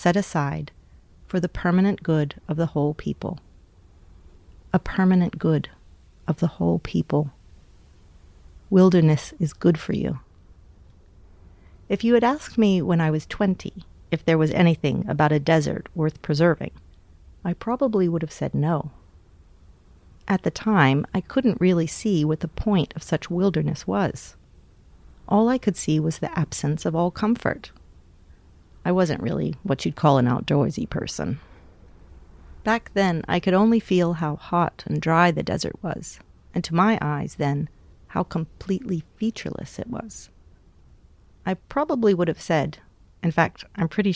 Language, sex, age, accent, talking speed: English, female, 40-59, American, 150 wpm